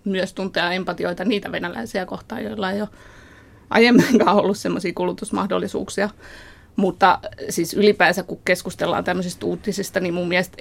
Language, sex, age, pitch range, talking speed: Finnish, female, 20-39, 175-200 Hz, 130 wpm